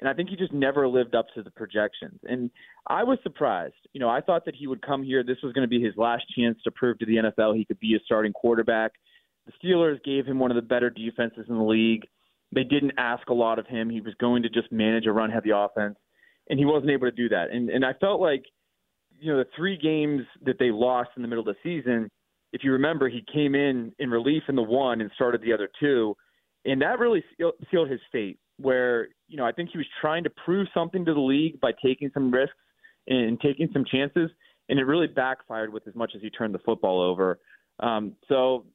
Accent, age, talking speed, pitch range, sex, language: American, 30-49, 245 wpm, 115-140 Hz, male, English